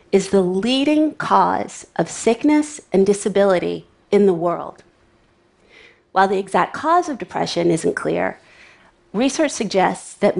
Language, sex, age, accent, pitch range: Chinese, female, 40-59, American, 180-230 Hz